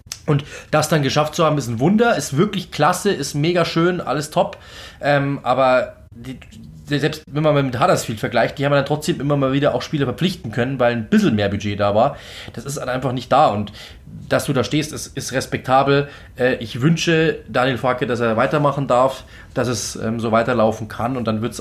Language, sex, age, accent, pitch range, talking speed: German, male, 20-39, German, 120-155 Hz, 215 wpm